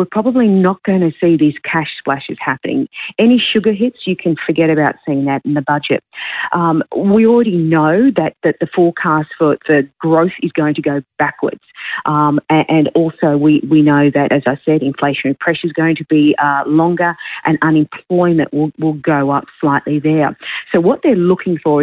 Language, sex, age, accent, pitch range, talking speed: English, female, 40-59, Australian, 145-170 Hz, 190 wpm